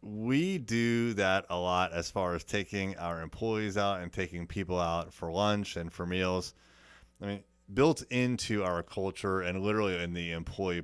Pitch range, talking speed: 85-100 Hz, 175 wpm